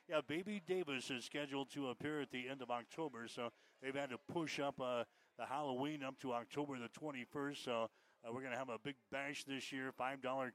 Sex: male